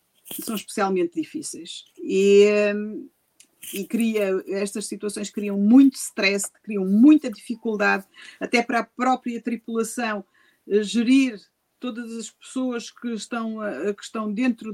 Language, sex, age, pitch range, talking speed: Portuguese, female, 50-69, 205-260 Hz, 105 wpm